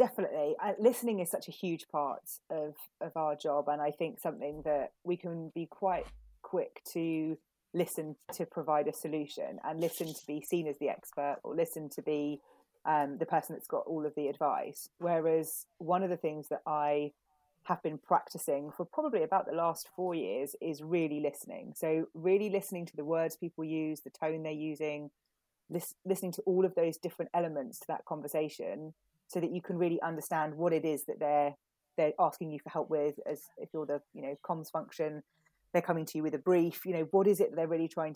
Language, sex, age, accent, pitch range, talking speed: English, female, 30-49, British, 150-175 Hz, 205 wpm